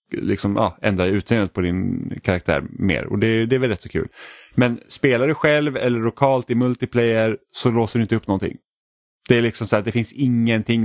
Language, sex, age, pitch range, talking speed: Swedish, male, 30-49, 90-115 Hz, 210 wpm